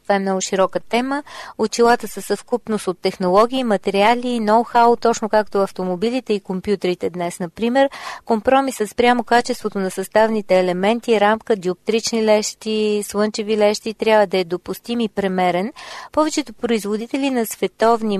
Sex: female